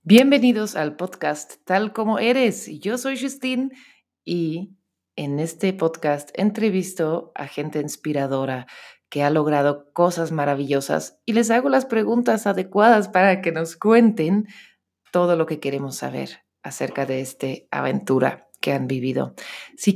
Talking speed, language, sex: 135 wpm, Spanish, female